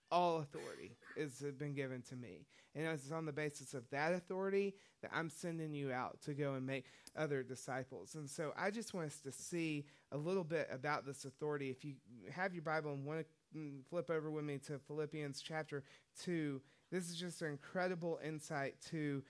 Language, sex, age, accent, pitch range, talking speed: English, male, 30-49, American, 140-170 Hz, 200 wpm